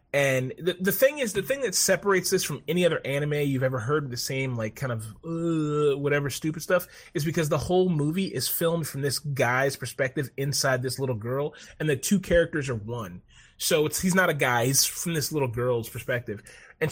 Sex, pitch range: male, 120-155 Hz